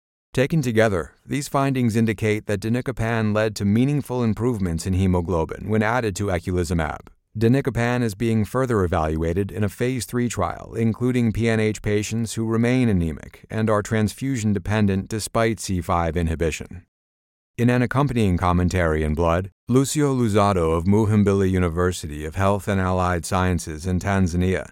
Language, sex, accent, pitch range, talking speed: English, male, American, 90-115 Hz, 140 wpm